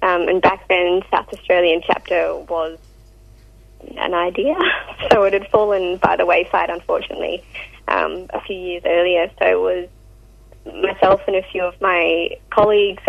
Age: 20-39